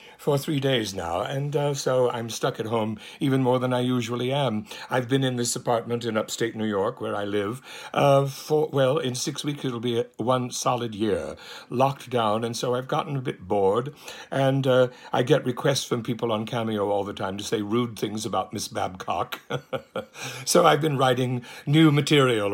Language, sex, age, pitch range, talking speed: English, male, 60-79, 110-130 Hz, 195 wpm